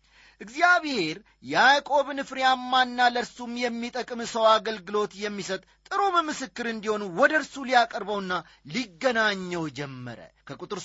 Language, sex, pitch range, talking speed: Amharic, male, 200-270 Hz, 95 wpm